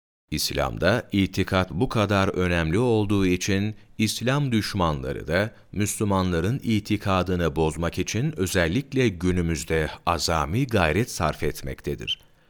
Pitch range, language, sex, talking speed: 85-115 Hz, Turkish, male, 95 wpm